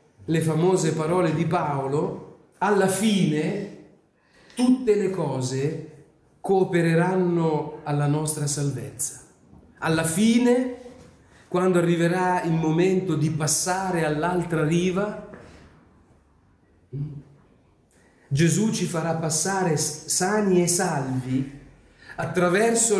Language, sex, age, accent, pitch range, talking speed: Italian, male, 40-59, native, 130-170 Hz, 85 wpm